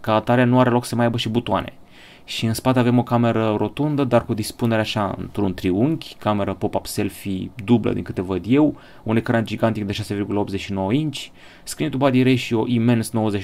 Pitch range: 100-125 Hz